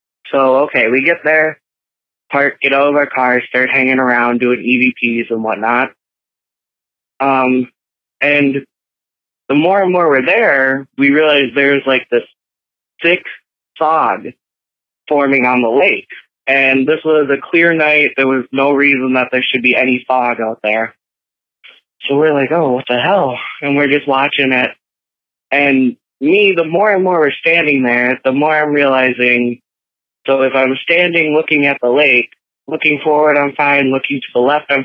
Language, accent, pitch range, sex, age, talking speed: English, American, 125-150 Hz, male, 20-39, 165 wpm